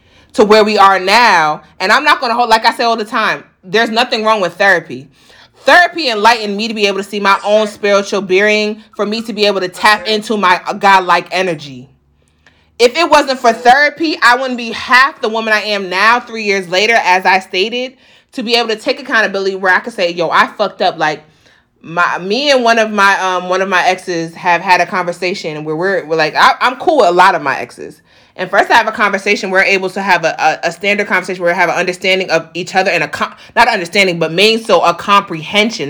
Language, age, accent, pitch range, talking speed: English, 30-49, American, 180-230 Hz, 235 wpm